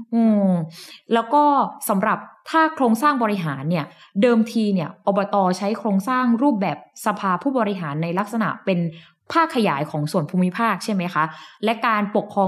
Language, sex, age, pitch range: Thai, female, 10-29, 180-245 Hz